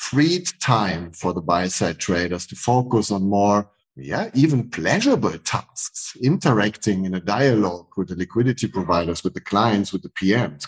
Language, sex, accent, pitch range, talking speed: English, male, German, 95-120 Hz, 155 wpm